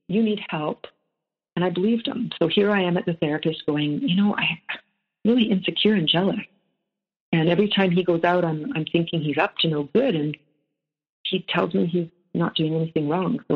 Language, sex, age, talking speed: English, female, 50-69, 205 wpm